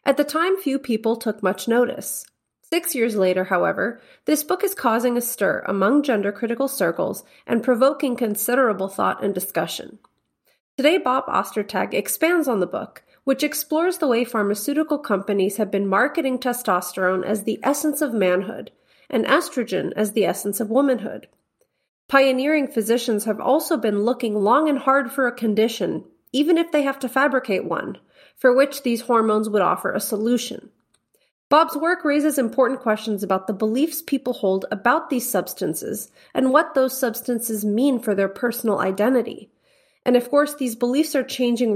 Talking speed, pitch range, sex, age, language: 160 wpm, 210-275 Hz, female, 30-49, English